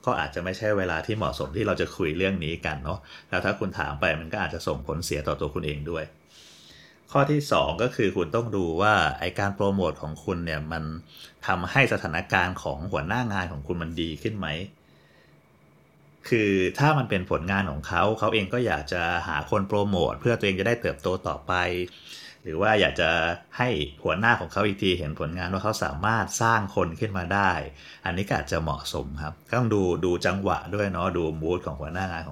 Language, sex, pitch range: Thai, male, 80-105 Hz